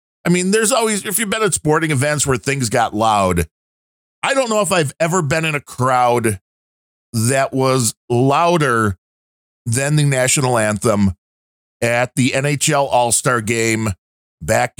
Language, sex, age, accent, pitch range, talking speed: English, male, 40-59, American, 110-160 Hz, 155 wpm